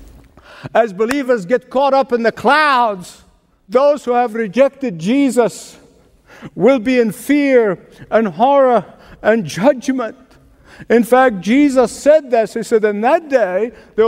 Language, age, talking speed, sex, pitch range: English, 50-69, 135 wpm, male, 210-260 Hz